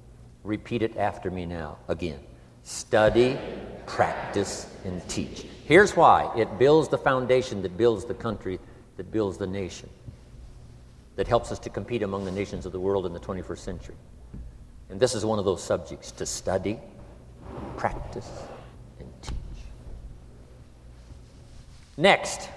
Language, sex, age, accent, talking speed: English, male, 60-79, American, 140 wpm